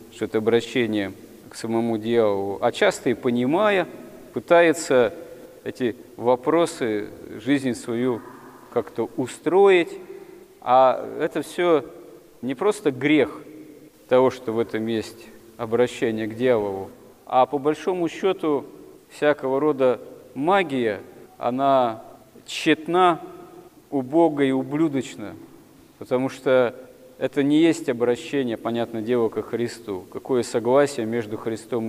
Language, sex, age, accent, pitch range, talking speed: Russian, male, 40-59, native, 120-150 Hz, 105 wpm